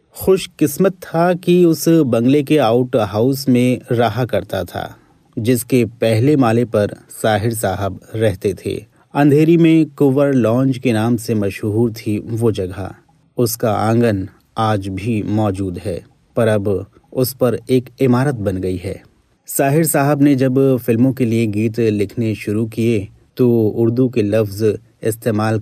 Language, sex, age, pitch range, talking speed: Hindi, male, 30-49, 110-135 Hz, 145 wpm